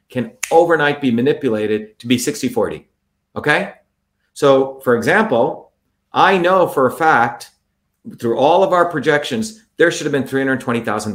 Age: 50-69